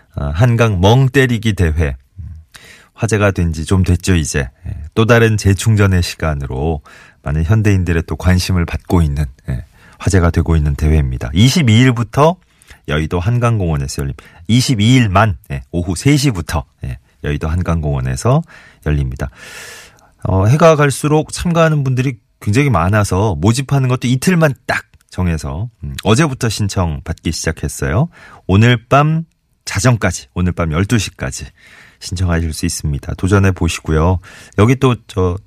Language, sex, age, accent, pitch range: Korean, male, 30-49, native, 80-130 Hz